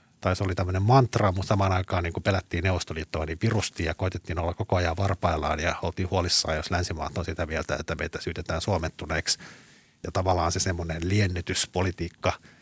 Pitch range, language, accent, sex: 85-100 Hz, Finnish, native, male